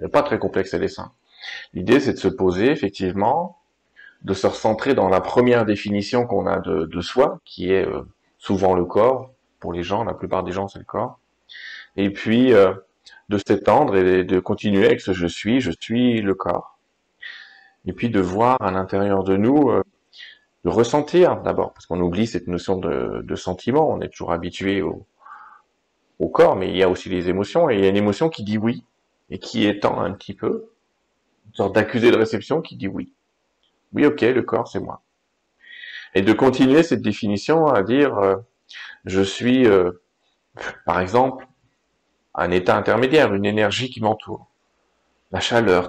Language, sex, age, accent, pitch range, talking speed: French, male, 30-49, French, 95-120 Hz, 185 wpm